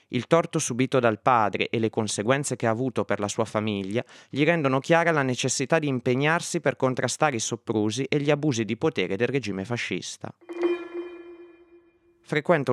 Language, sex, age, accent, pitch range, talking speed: Italian, male, 30-49, native, 115-155 Hz, 165 wpm